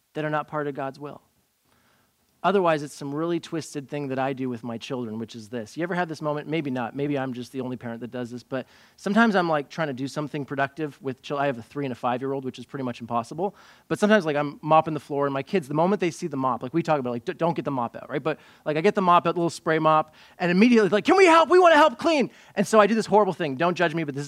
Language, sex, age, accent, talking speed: English, male, 30-49, American, 300 wpm